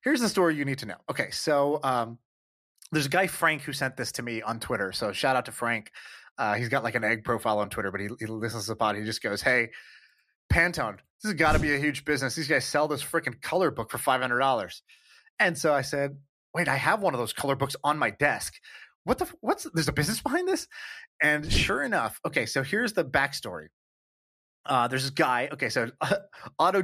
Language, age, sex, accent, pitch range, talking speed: English, 30-49, male, American, 125-170 Hz, 235 wpm